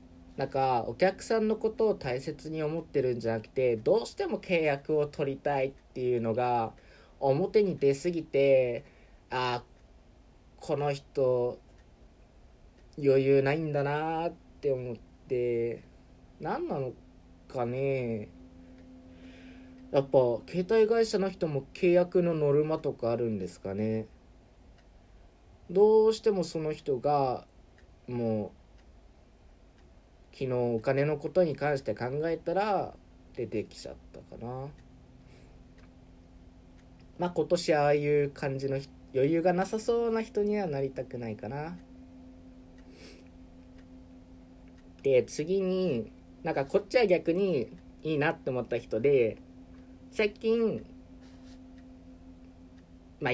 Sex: male